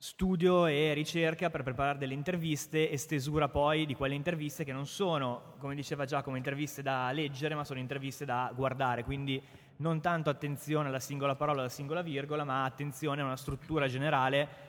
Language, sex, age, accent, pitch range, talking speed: Italian, male, 20-39, native, 135-155 Hz, 180 wpm